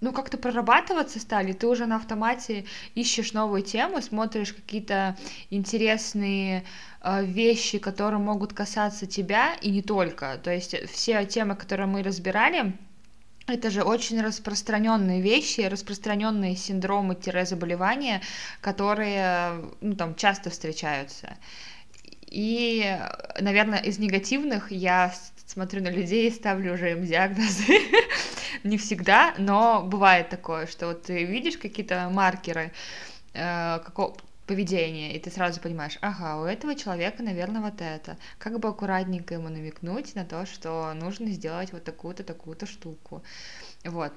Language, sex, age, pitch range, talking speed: Russian, female, 20-39, 180-220 Hz, 125 wpm